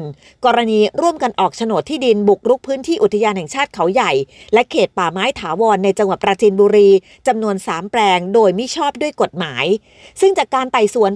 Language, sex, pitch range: Thai, female, 205-275 Hz